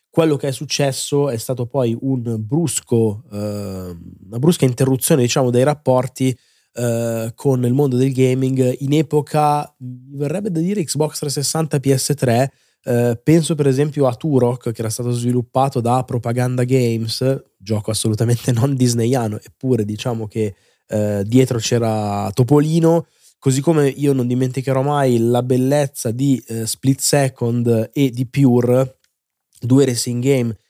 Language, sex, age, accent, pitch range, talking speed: Italian, male, 20-39, native, 115-135 Hz, 135 wpm